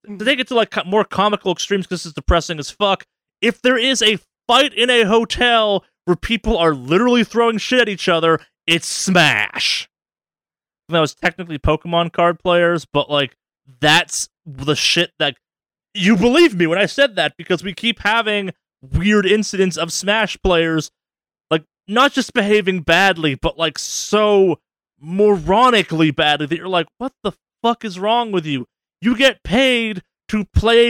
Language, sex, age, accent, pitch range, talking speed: English, male, 20-39, American, 155-210 Hz, 170 wpm